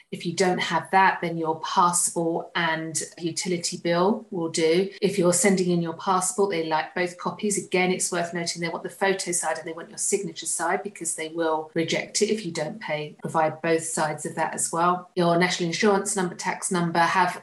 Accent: British